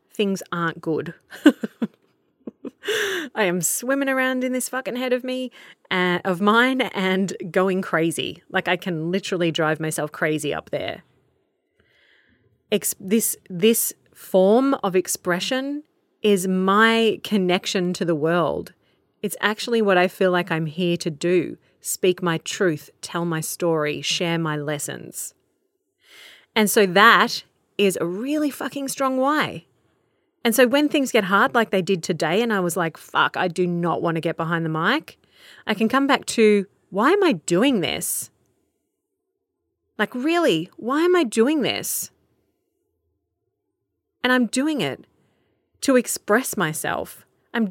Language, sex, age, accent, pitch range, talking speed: English, female, 30-49, Australian, 180-260 Hz, 145 wpm